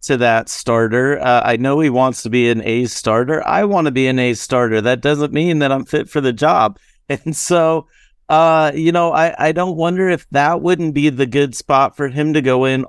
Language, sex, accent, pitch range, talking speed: English, male, American, 120-150 Hz, 235 wpm